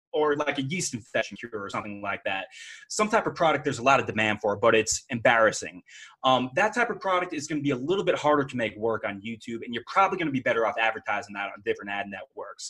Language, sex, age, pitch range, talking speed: English, male, 30-49, 110-165 Hz, 250 wpm